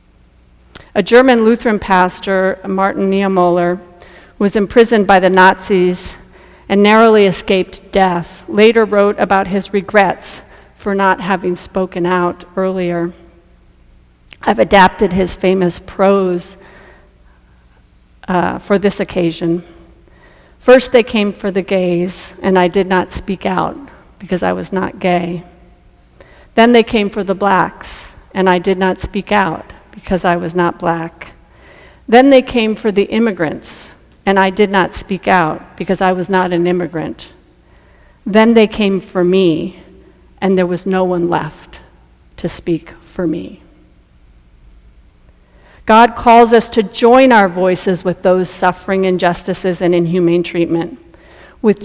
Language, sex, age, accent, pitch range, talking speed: English, female, 40-59, American, 170-200 Hz, 135 wpm